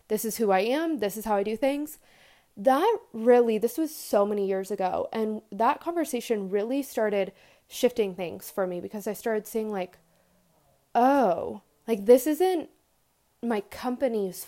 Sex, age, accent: female, 20-39, American